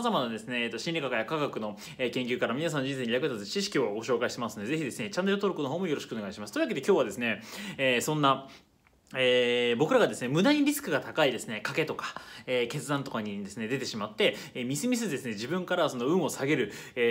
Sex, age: male, 20-39